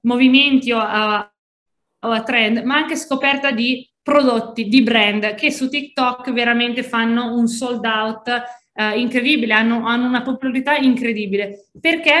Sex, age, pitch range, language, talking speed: female, 20-39, 220-270 Hz, Italian, 130 wpm